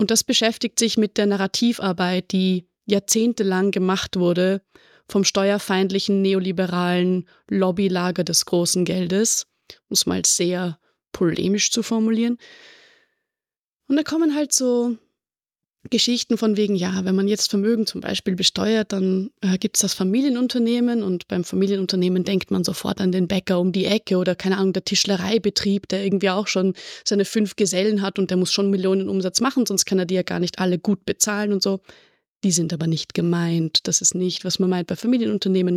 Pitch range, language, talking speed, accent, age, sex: 185-220 Hz, German, 175 wpm, German, 20-39, female